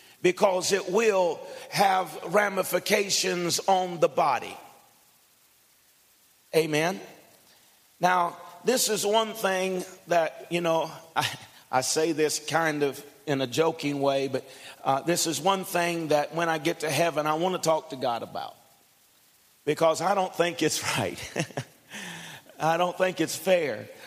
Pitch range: 150-190 Hz